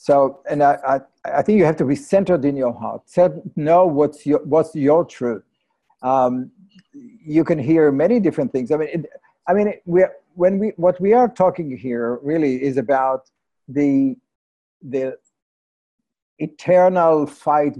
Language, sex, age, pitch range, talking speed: English, male, 50-69, 130-175 Hz, 160 wpm